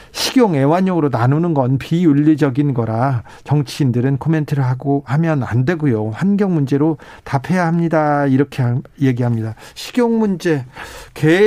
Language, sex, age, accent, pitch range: Korean, male, 40-59, native, 135-175 Hz